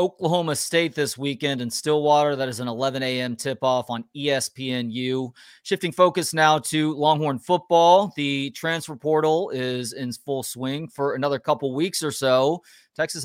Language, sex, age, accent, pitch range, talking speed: English, male, 30-49, American, 130-155 Hz, 155 wpm